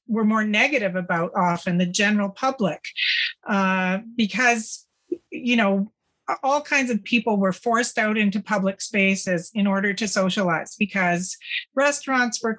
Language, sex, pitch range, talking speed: English, female, 195-235 Hz, 140 wpm